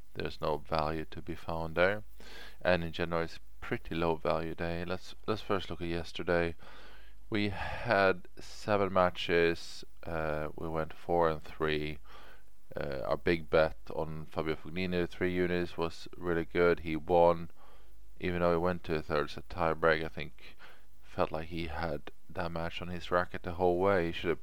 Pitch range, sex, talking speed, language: 80-90 Hz, male, 175 wpm, English